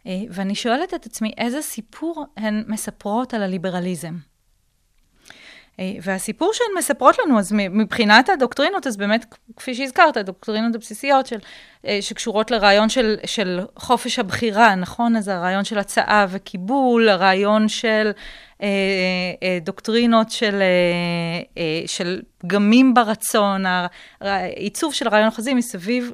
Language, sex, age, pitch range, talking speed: Hebrew, female, 30-49, 190-235 Hz, 110 wpm